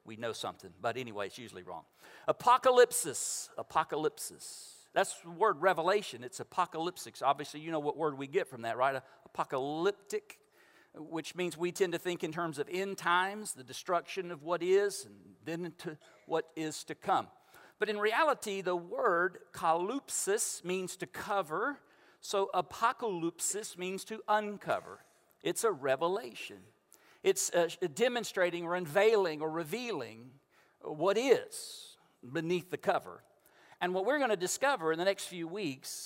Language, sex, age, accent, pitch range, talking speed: English, male, 50-69, American, 155-210 Hz, 150 wpm